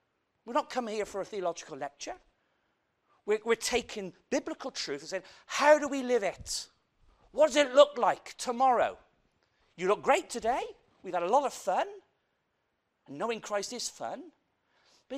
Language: English